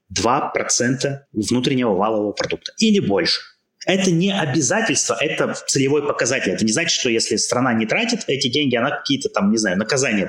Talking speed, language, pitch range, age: 165 wpm, Russian, 115-180 Hz, 30-49